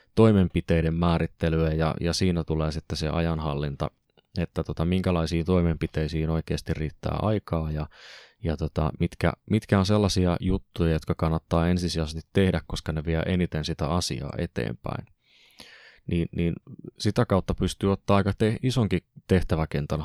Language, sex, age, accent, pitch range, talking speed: Finnish, male, 20-39, native, 80-95 Hz, 135 wpm